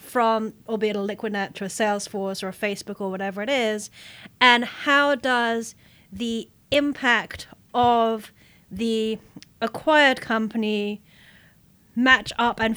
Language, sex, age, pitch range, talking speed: English, female, 30-49, 195-240 Hz, 125 wpm